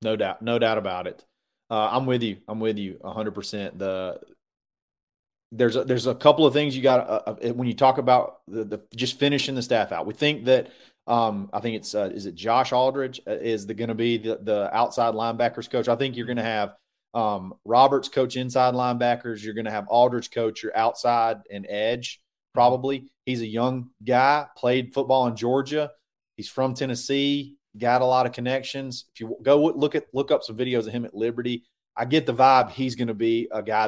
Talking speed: 215 wpm